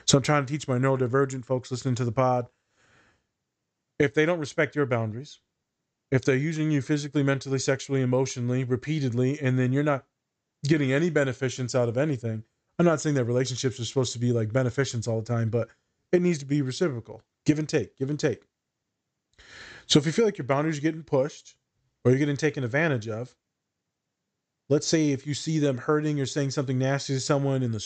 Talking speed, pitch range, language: 205 wpm, 125-150 Hz, English